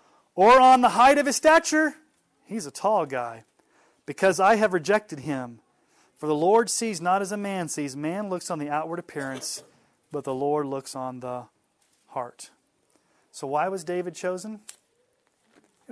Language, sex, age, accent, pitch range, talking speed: English, male, 30-49, American, 145-200 Hz, 165 wpm